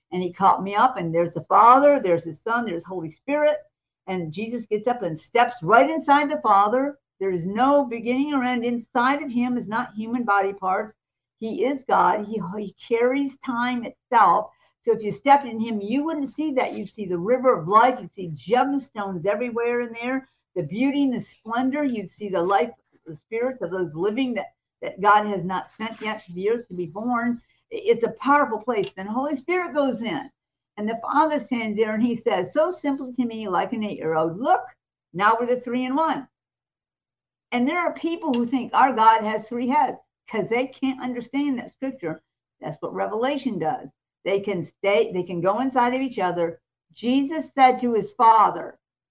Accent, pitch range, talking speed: American, 195-265 Hz, 200 wpm